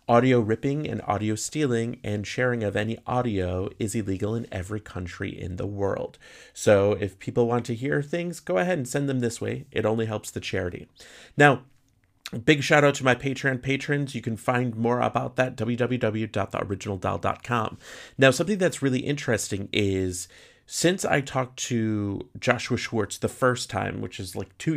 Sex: male